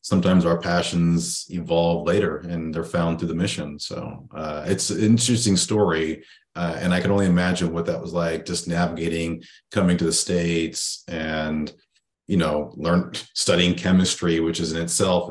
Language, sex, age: English, male, 30-49